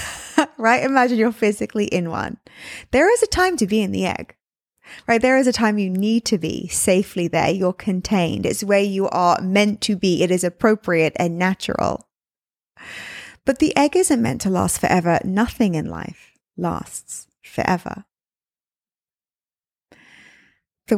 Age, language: 20-39, English